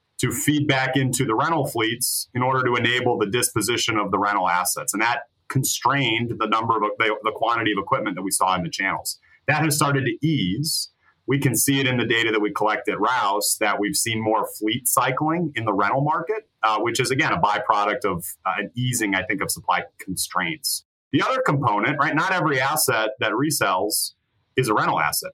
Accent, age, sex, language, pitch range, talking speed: American, 30-49, male, English, 110-145 Hz, 210 wpm